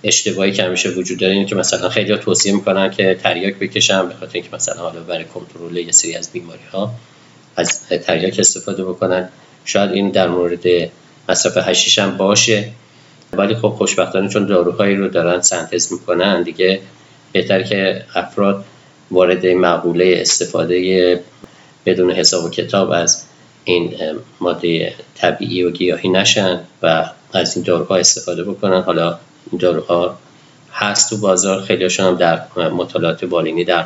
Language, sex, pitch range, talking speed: Persian, male, 90-100 Hz, 145 wpm